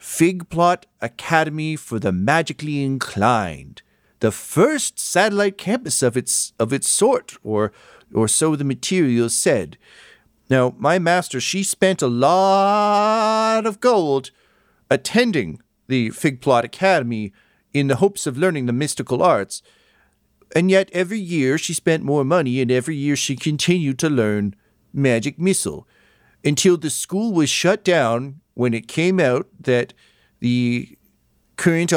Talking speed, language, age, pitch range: 130 wpm, English, 50-69, 125-180 Hz